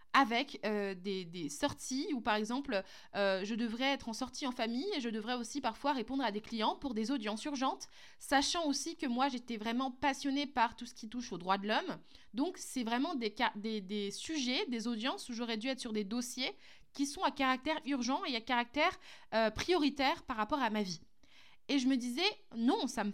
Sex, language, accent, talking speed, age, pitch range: female, French, French, 215 wpm, 20-39, 230-300 Hz